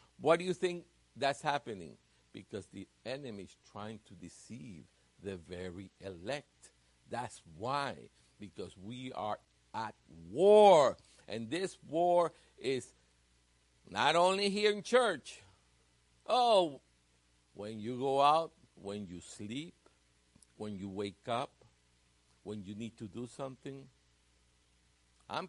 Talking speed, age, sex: 120 wpm, 60-79, male